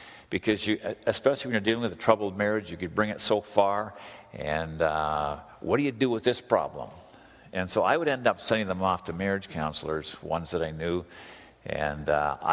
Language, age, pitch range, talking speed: English, 50-69, 95-120 Hz, 200 wpm